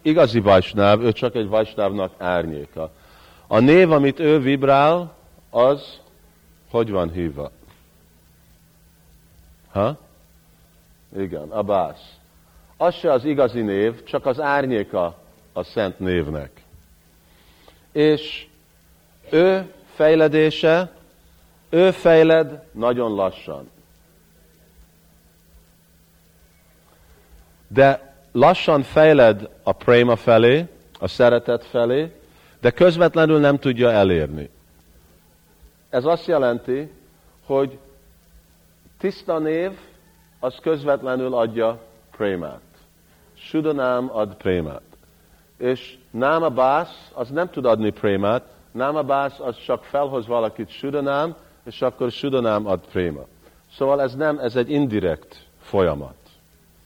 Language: Hungarian